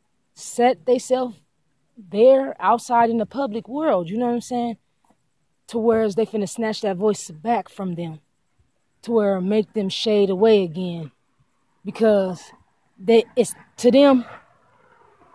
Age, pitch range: 20-39, 175-240 Hz